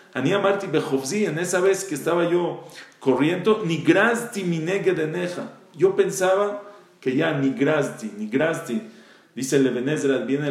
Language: English